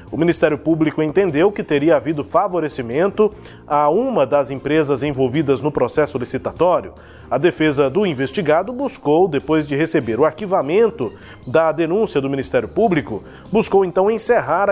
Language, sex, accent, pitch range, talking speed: Portuguese, male, Brazilian, 145-190 Hz, 140 wpm